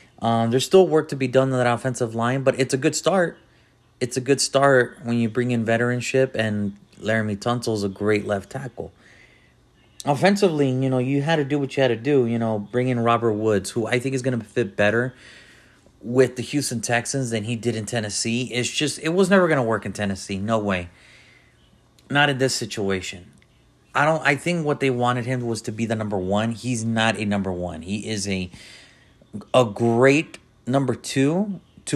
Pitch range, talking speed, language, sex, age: 110-130 Hz, 205 wpm, English, male, 30-49